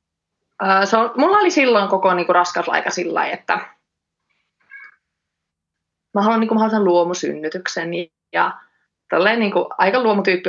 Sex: female